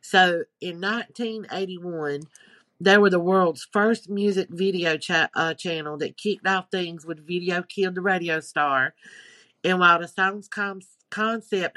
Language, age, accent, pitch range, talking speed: English, 50-69, American, 160-190 Hz, 140 wpm